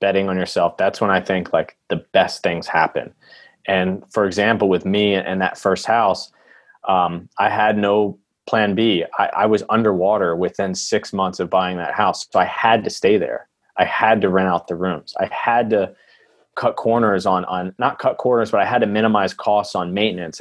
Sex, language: male, English